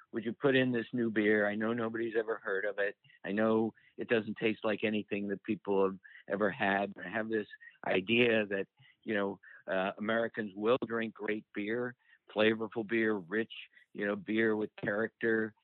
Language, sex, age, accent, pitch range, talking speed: English, male, 50-69, American, 100-115 Hz, 180 wpm